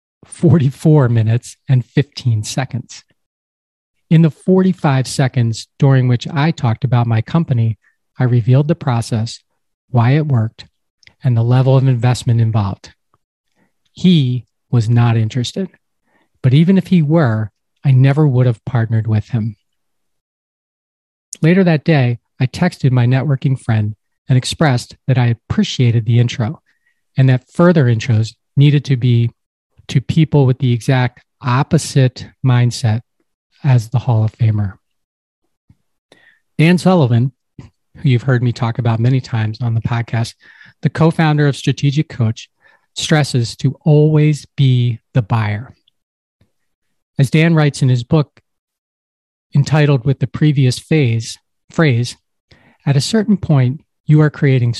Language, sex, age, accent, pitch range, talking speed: English, male, 40-59, American, 115-145 Hz, 135 wpm